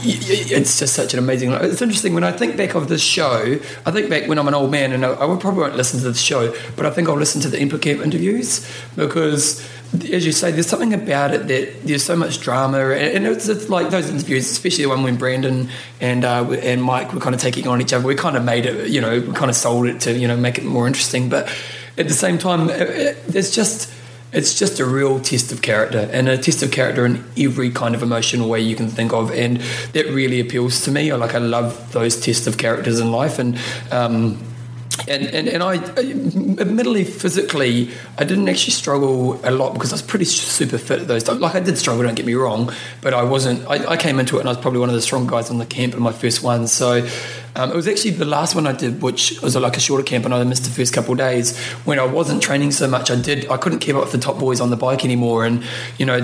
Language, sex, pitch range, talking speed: English, male, 120-150 Hz, 260 wpm